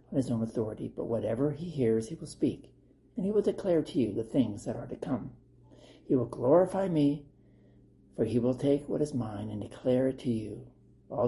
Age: 60-79